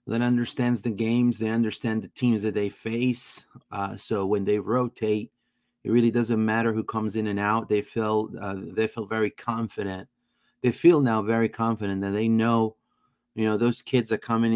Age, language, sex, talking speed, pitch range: 30-49, English, male, 190 wpm, 100-120 Hz